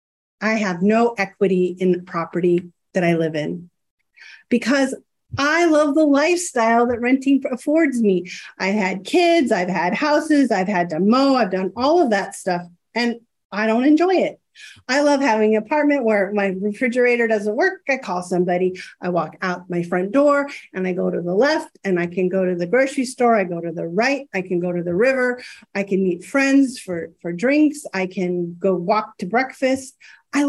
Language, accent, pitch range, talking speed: English, American, 190-275 Hz, 195 wpm